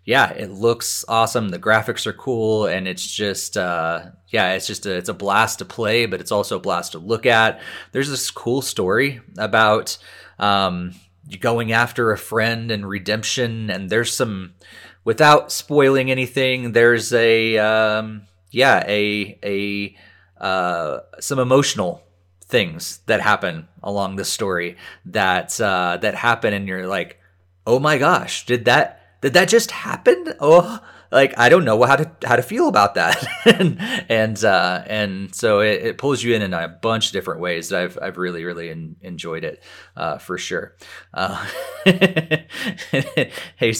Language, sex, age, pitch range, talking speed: English, male, 30-49, 95-120 Hz, 160 wpm